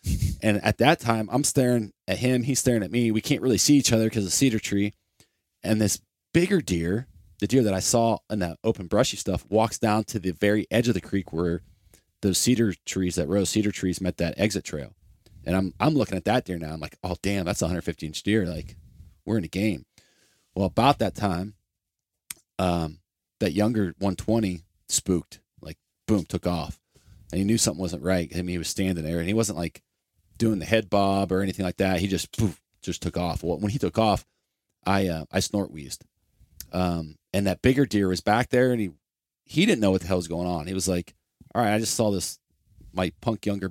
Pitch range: 90-110 Hz